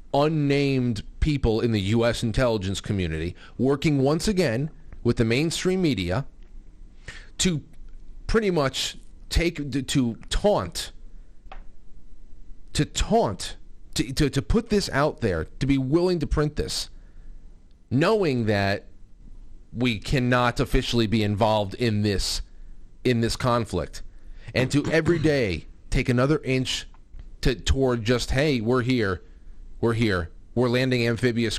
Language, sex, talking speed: English, male, 125 wpm